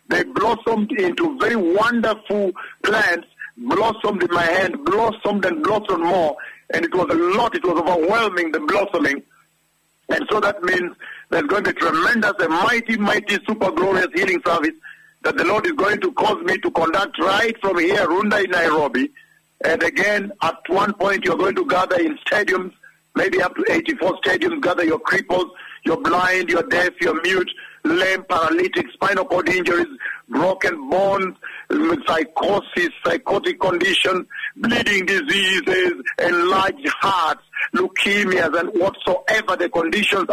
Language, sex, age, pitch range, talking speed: English, male, 60-79, 185-310 Hz, 150 wpm